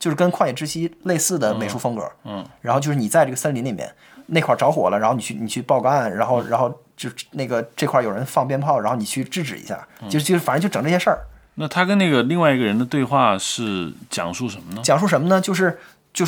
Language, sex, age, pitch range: Chinese, male, 20-39, 125-175 Hz